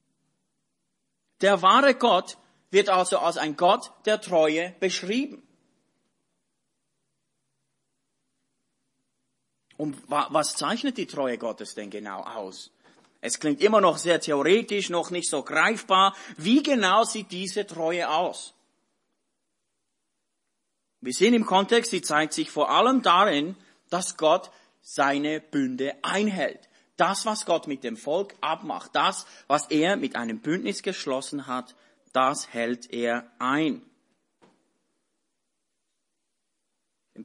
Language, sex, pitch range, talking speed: English, male, 145-215 Hz, 115 wpm